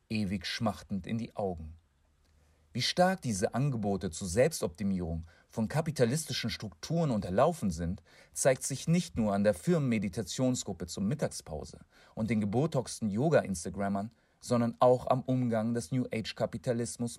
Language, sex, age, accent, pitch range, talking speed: German, male, 40-59, German, 95-125 Hz, 120 wpm